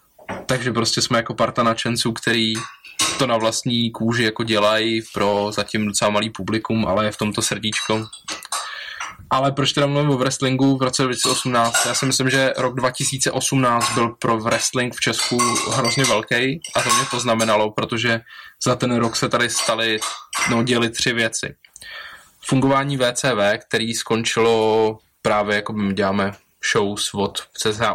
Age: 20-39